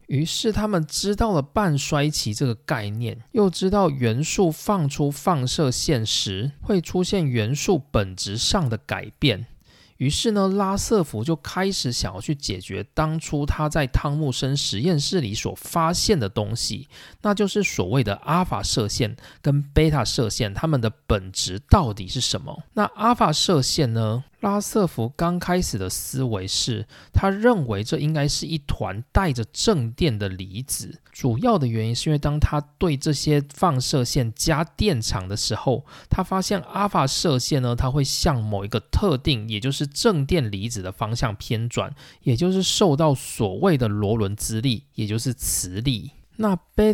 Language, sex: Chinese, male